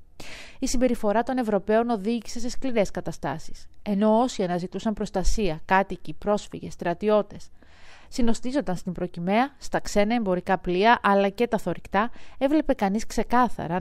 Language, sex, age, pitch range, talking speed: Greek, female, 30-49, 185-225 Hz, 125 wpm